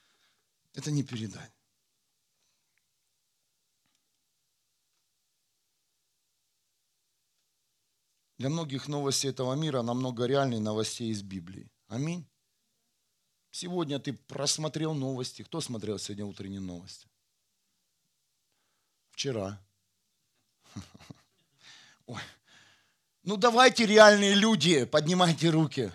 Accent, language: native, Russian